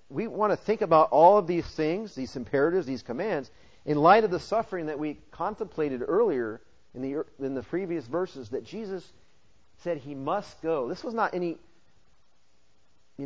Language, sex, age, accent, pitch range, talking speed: English, male, 40-59, American, 115-165 Hz, 175 wpm